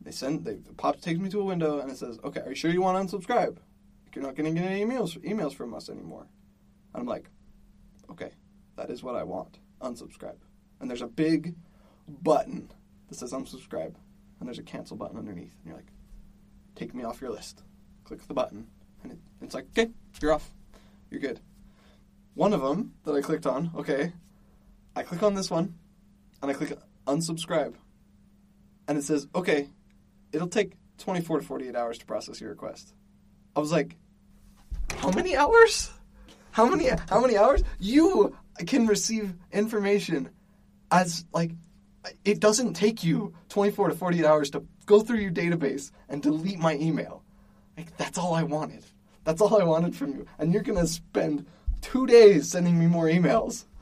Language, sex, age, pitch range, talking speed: English, male, 10-29, 155-205 Hz, 180 wpm